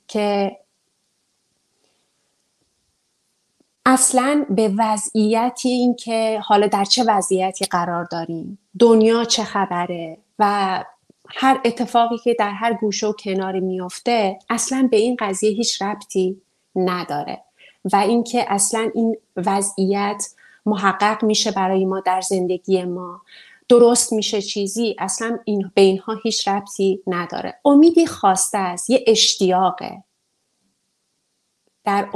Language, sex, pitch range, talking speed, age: English, female, 190-225 Hz, 110 wpm, 30-49